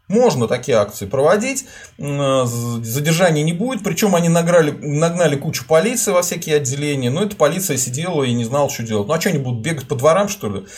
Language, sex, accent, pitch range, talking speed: Russian, male, native, 115-170 Hz, 195 wpm